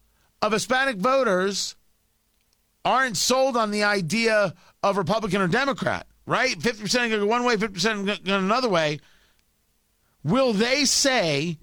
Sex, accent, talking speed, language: male, American, 135 wpm, English